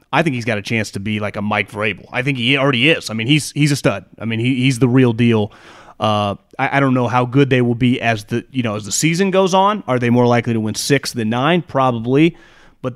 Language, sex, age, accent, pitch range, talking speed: English, male, 30-49, American, 120-160 Hz, 280 wpm